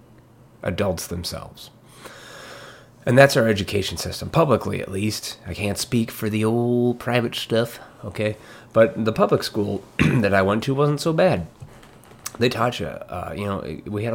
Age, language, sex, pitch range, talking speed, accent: 30-49, English, male, 95-125 Hz, 160 wpm, American